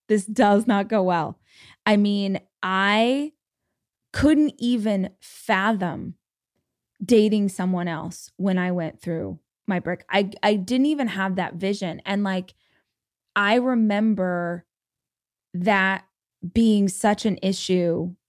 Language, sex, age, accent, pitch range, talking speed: English, female, 20-39, American, 180-215 Hz, 120 wpm